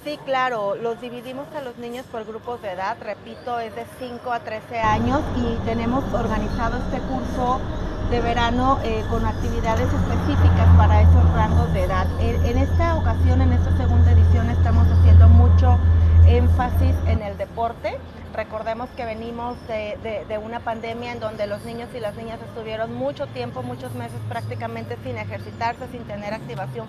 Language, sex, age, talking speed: Spanish, female, 30-49, 165 wpm